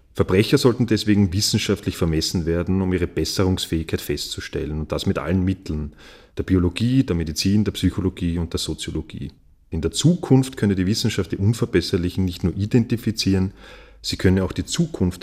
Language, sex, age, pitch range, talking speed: German, male, 30-49, 85-105 Hz, 160 wpm